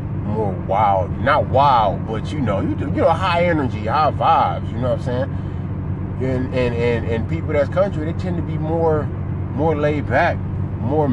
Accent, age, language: American, 30-49, English